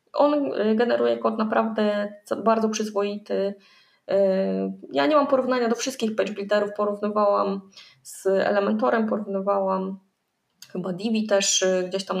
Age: 20-39